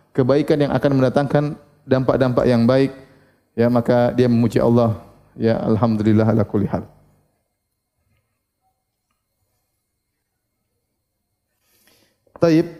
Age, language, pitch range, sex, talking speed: 30-49, Indonesian, 120-155 Hz, male, 80 wpm